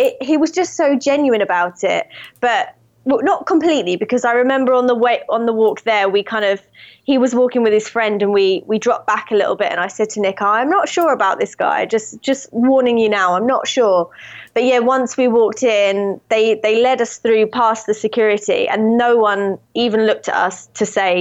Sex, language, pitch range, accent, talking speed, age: female, English, 200-235 Hz, British, 230 wpm, 20-39